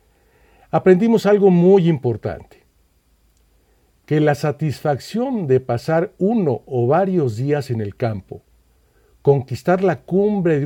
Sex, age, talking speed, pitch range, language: male, 50-69, 115 wpm, 115-175 Hz, Spanish